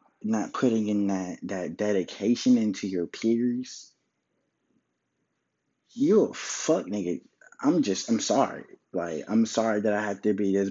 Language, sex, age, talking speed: English, male, 20-39, 145 wpm